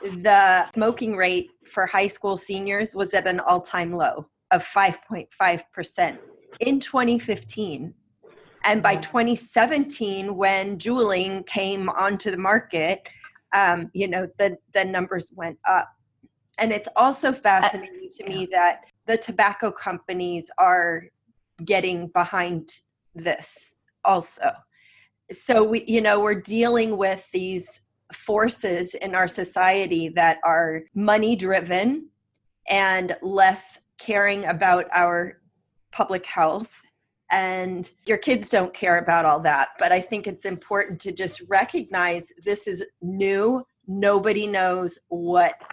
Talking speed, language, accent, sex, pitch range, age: 120 wpm, English, American, female, 180-220 Hz, 30-49